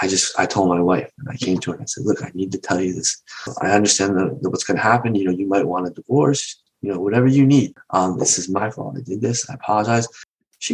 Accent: American